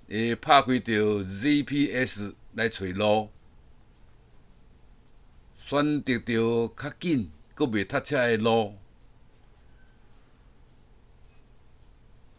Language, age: Chinese, 60-79